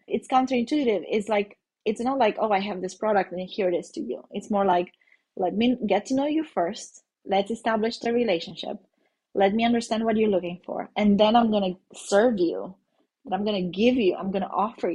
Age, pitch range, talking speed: 30-49, 190-235 Hz, 215 wpm